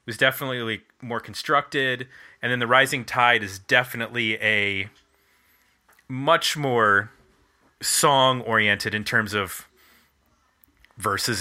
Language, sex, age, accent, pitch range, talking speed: English, male, 30-49, American, 110-145 Hz, 110 wpm